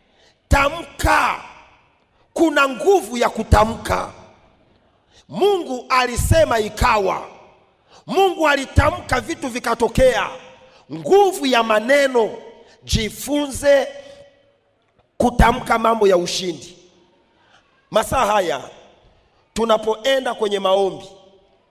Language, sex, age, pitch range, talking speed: Swahili, male, 40-59, 230-310 Hz, 70 wpm